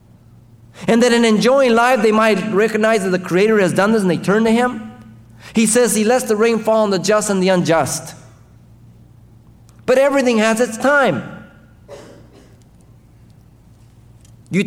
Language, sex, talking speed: English, male, 155 wpm